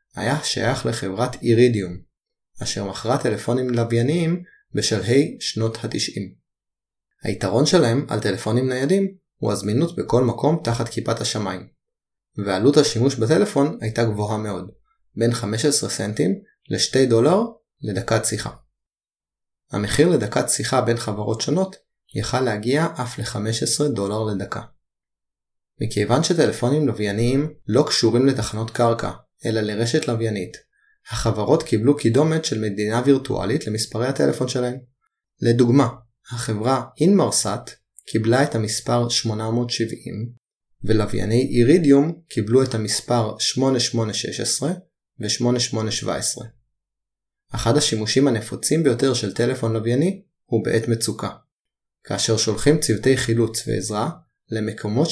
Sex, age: male, 20-39